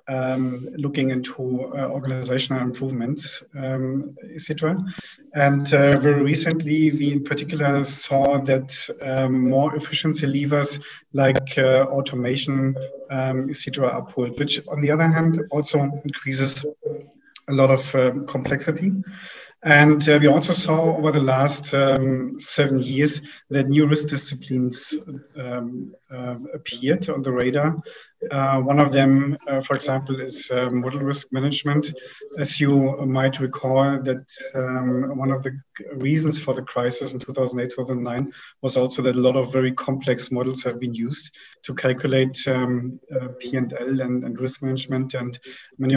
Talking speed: 150 wpm